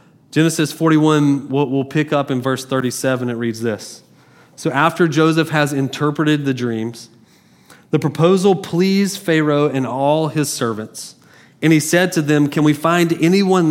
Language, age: English, 30-49